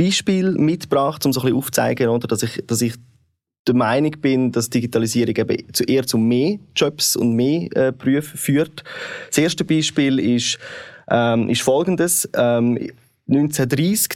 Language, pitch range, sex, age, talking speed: German, 115-145 Hz, male, 20-39, 155 wpm